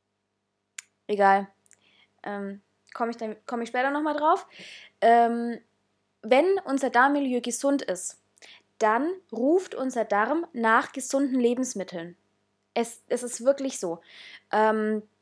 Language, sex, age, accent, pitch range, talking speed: German, female, 20-39, German, 205-270 Hz, 105 wpm